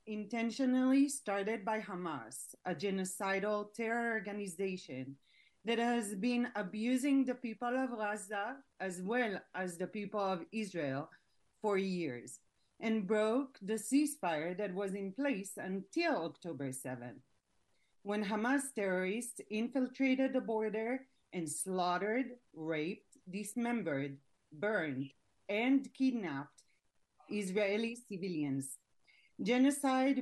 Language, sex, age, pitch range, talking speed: English, female, 40-59, 175-230 Hz, 105 wpm